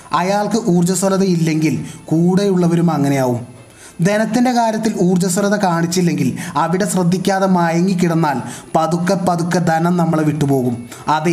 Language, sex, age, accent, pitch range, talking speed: Malayalam, male, 20-39, native, 155-195 Hz, 100 wpm